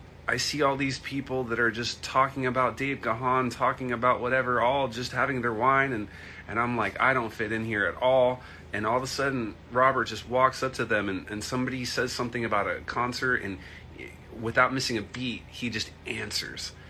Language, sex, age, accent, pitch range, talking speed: English, male, 30-49, American, 100-130 Hz, 205 wpm